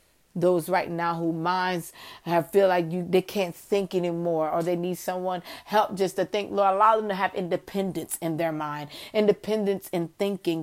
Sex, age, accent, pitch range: female, 40-59, American, 170-195 Hz